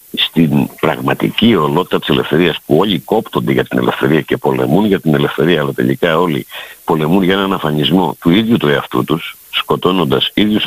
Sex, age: male, 60-79